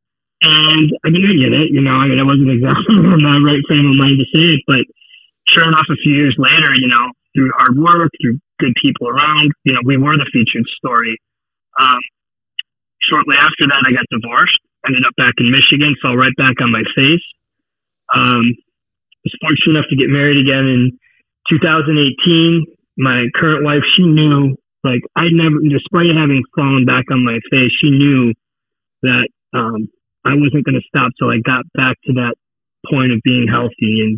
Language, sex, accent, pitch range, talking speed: English, male, American, 125-145 Hz, 190 wpm